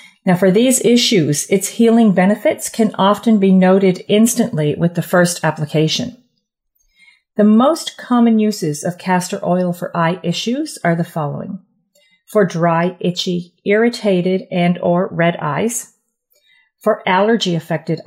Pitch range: 170-225 Hz